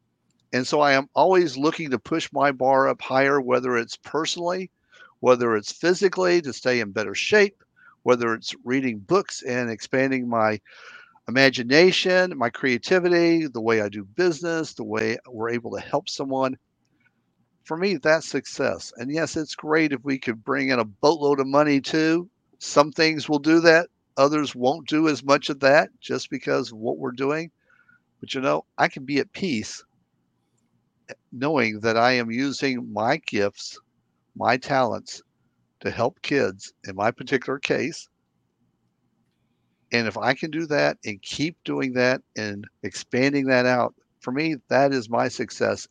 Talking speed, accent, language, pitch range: 165 wpm, American, English, 120-155 Hz